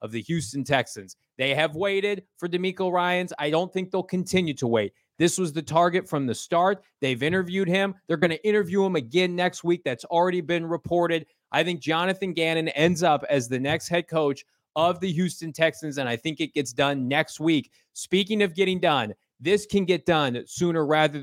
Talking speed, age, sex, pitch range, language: 205 wpm, 30-49, male, 155-185 Hz, English